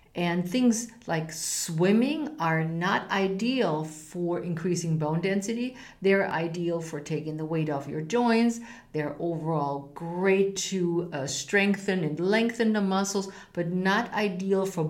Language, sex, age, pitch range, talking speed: English, female, 50-69, 155-200 Hz, 135 wpm